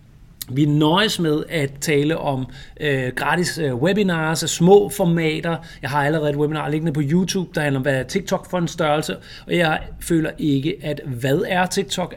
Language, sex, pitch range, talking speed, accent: Danish, male, 140-170 Hz, 185 wpm, native